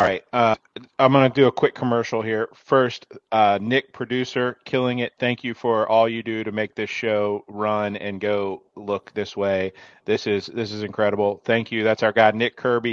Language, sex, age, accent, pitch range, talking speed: English, male, 40-59, American, 105-125 Hz, 210 wpm